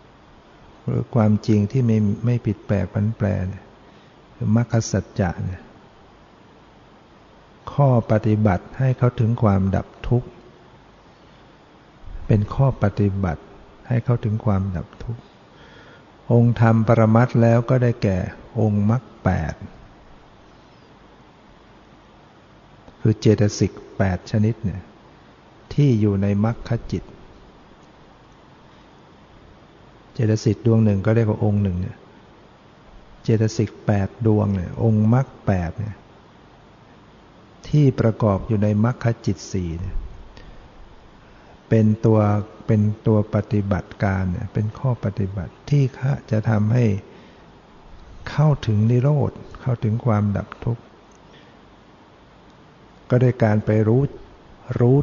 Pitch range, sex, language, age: 100-120 Hz, male, Thai, 60-79